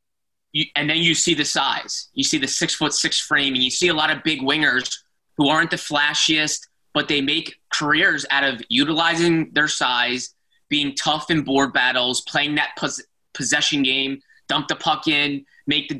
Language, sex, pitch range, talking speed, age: English, male, 135-165 Hz, 190 wpm, 20-39